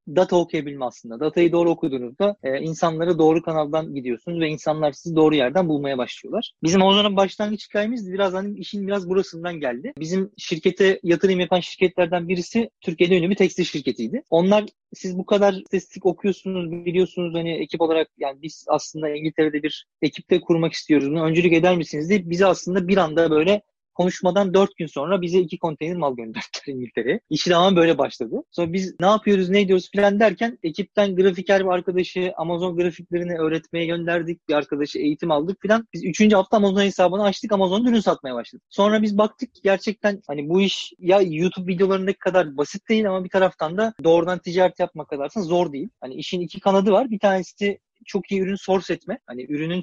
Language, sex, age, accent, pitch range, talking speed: Turkish, male, 30-49, native, 165-200 Hz, 180 wpm